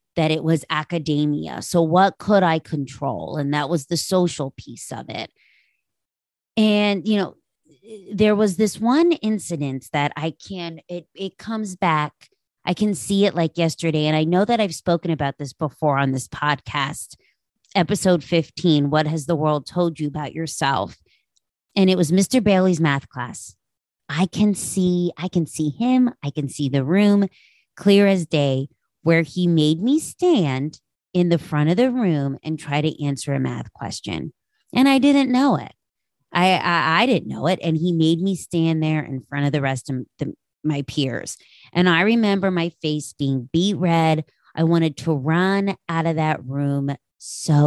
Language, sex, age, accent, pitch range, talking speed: English, female, 30-49, American, 145-185 Hz, 180 wpm